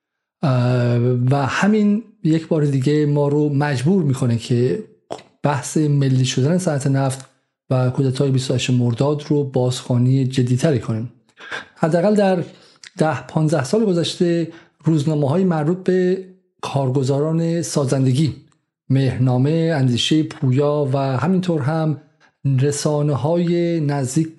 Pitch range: 130-160 Hz